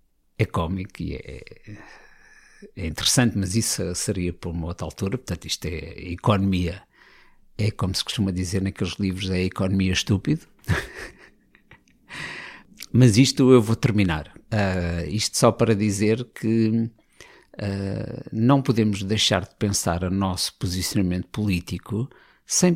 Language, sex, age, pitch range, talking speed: Portuguese, male, 50-69, 95-125 Hz, 130 wpm